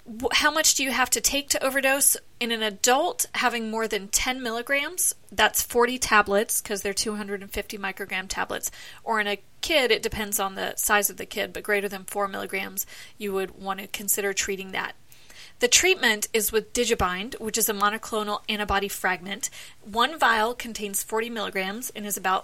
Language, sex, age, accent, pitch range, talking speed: English, female, 30-49, American, 205-245 Hz, 180 wpm